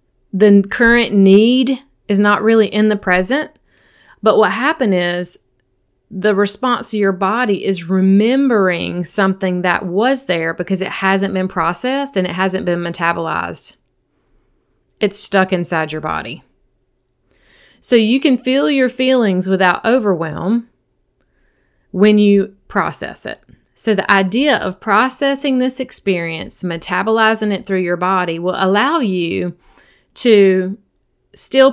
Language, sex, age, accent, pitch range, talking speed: English, female, 30-49, American, 185-230 Hz, 130 wpm